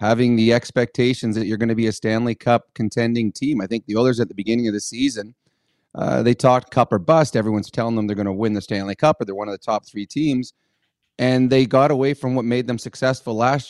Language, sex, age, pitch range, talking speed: English, male, 30-49, 115-135 Hz, 250 wpm